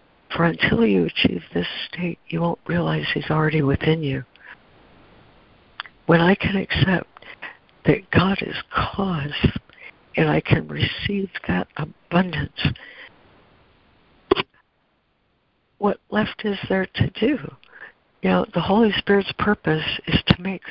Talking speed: 120 wpm